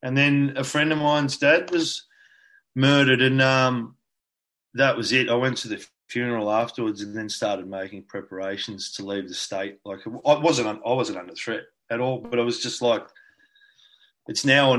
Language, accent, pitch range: English, Australian, 115-140 Hz